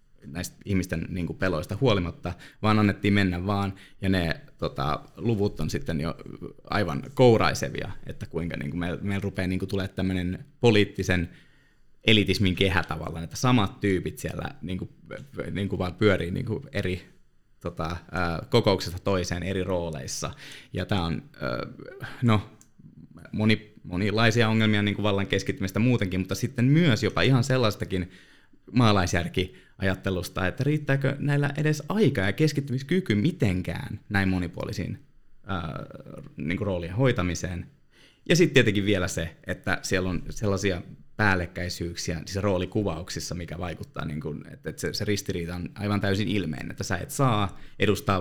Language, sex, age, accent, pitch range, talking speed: Finnish, male, 20-39, native, 90-110 Hz, 120 wpm